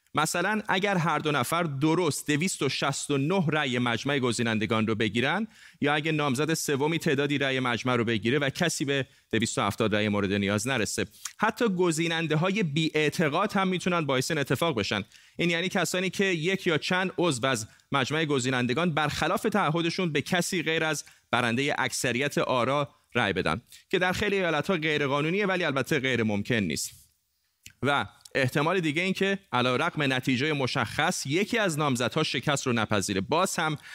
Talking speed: 155 wpm